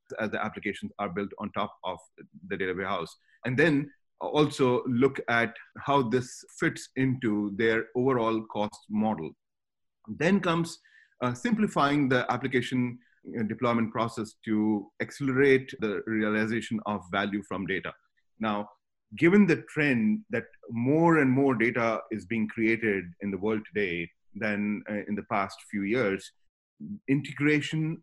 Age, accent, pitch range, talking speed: 30-49, Indian, 110-130 Hz, 135 wpm